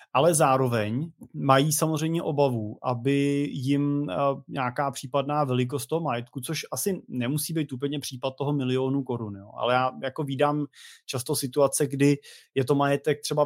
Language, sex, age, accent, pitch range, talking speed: Czech, male, 20-39, native, 125-145 Hz, 145 wpm